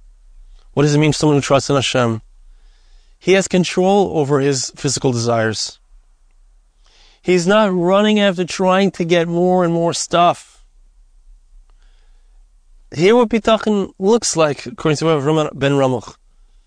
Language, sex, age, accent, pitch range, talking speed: English, male, 30-49, American, 130-190 Hz, 135 wpm